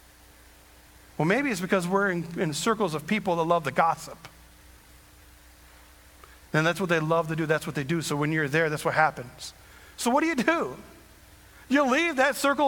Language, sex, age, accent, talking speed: English, male, 40-59, American, 195 wpm